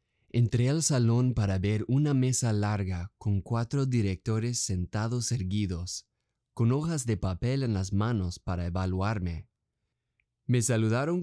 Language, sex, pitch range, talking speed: Spanish, male, 100-130 Hz, 130 wpm